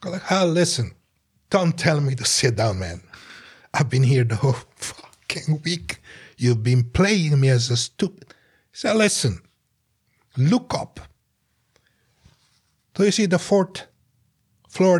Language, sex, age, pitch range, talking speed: English, male, 60-79, 125-190 Hz, 135 wpm